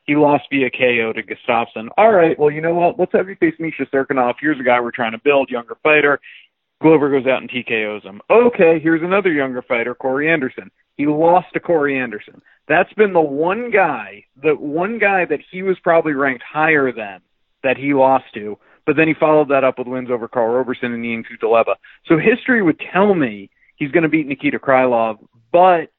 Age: 40-59